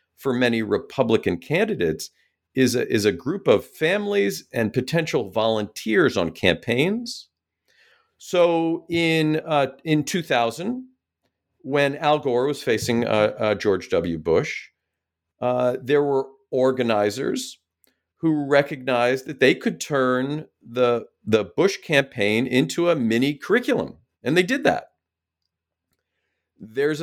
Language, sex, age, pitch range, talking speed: English, male, 50-69, 110-145 Hz, 120 wpm